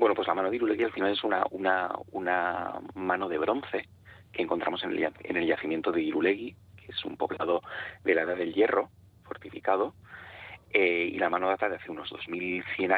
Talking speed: 185 wpm